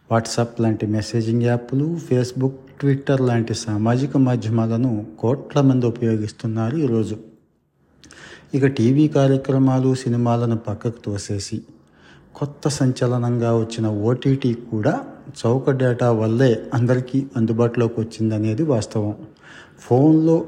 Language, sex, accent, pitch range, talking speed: Telugu, male, native, 110-130 Hz, 95 wpm